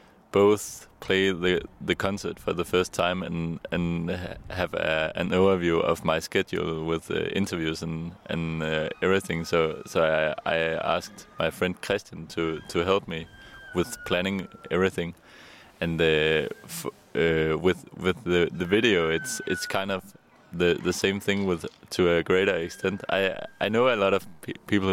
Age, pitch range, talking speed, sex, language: 20-39, 80-95 Hz, 170 wpm, male, German